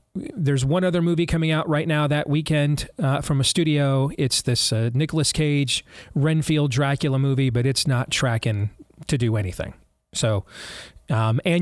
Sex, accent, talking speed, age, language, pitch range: male, American, 165 wpm, 30-49, English, 120-155 Hz